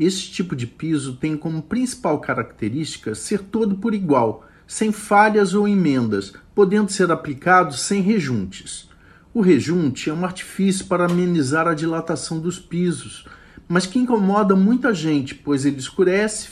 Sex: male